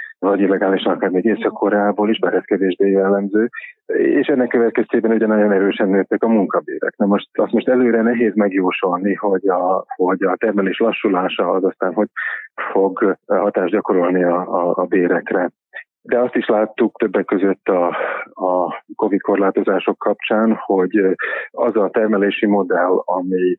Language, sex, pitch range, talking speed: Hungarian, male, 95-110 Hz, 140 wpm